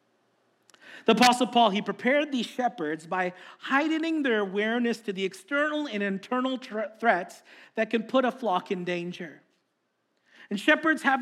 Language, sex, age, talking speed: English, male, 40-59, 145 wpm